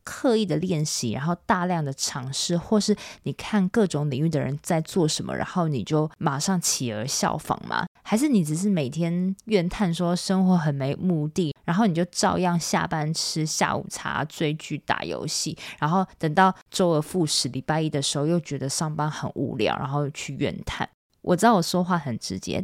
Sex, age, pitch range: female, 20-39, 150-190 Hz